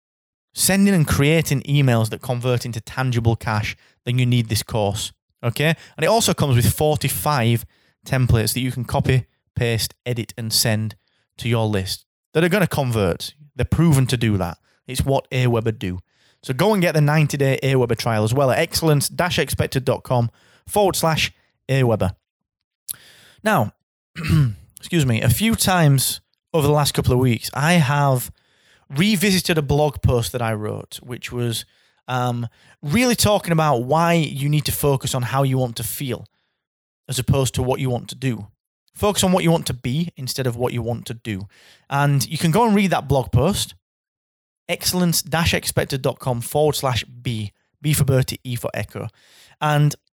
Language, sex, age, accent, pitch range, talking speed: English, male, 20-39, British, 115-150 Hz, 170 wpm